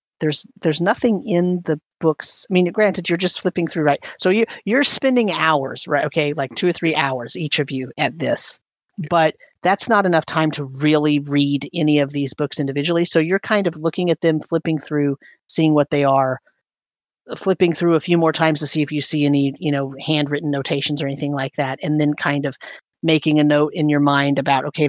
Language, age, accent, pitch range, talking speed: English, 40-59, American, 145-170 Hz, 215 wpm